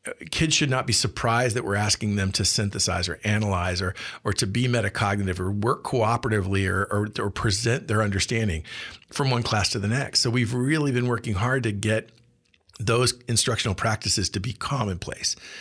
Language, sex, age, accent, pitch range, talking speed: English, male, 50-69, American, 100-125 Hz, 180 wpm